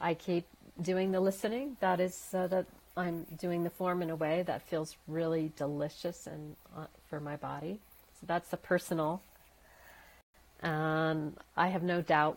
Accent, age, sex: American, 50-69, female